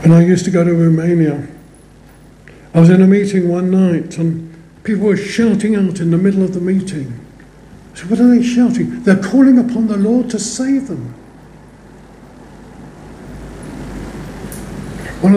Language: English